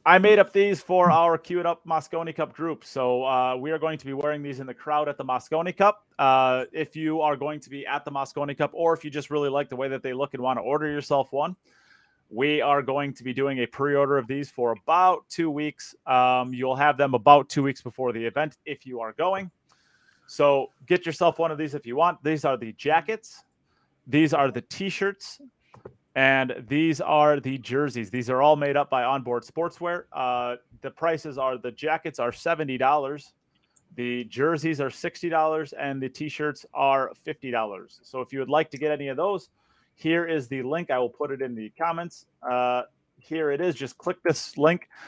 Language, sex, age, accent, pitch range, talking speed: English, male, 30-49, American, 130-160 Hz, 215 wpm